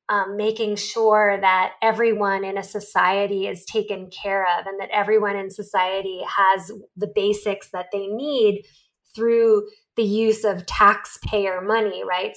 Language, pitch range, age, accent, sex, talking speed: English, 195-230 Hz, 20-39, American, female, 145 wpm